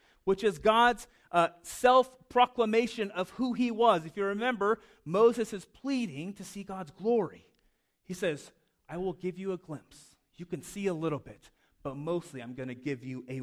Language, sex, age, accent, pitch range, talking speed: English, male, 30-49, American, 150-195 Hz, 185 wpm